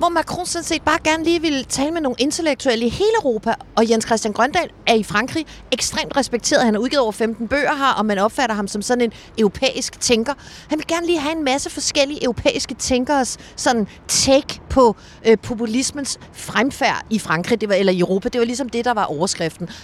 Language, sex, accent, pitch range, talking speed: Danish, female, native, 210-275 Hz, 205 wpm